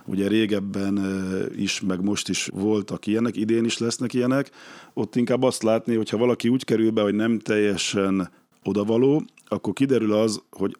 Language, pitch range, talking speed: Hungarian, 95-110 Hz, 160 wpm